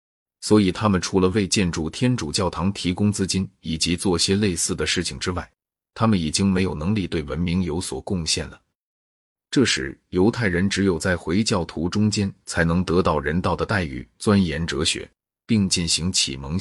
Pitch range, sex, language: 85-105 Hz, male, Chinese